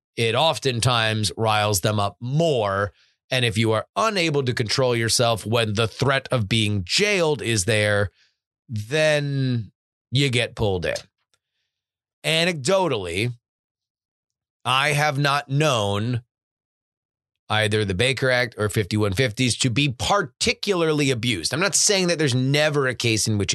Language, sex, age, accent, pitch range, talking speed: English, male, 30-49, American, 110-150 Hz, 135 wpm